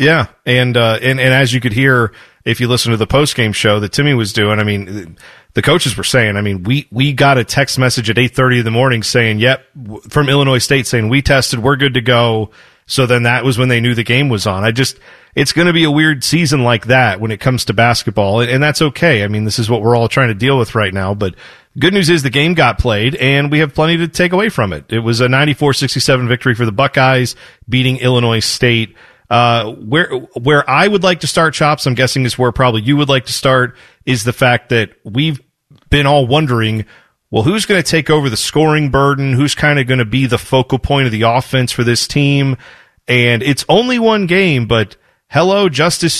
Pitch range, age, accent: 120-150 Hz, 40-59, American